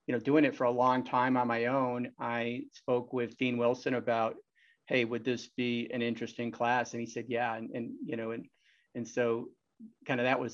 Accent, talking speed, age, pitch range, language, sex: American, 220 wpm, 40-59, 120-135 Hz, English, male